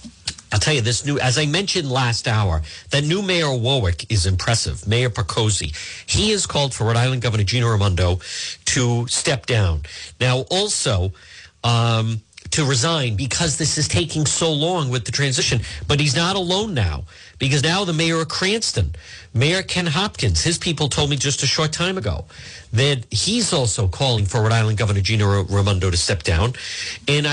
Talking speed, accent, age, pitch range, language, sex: 180 wpm, American, 50-69, 100-150 Hz, English, male